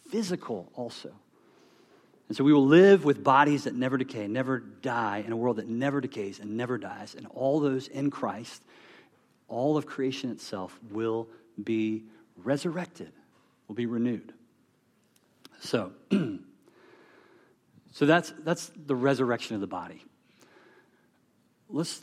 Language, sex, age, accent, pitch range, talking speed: English, male, 40-59, American, 115-170 Hz, 130 wpm